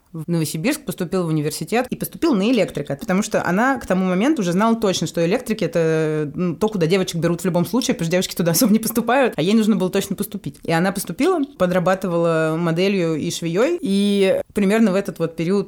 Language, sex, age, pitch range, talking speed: Russian, female, 20-39, 170-230 Hz, 205 wpm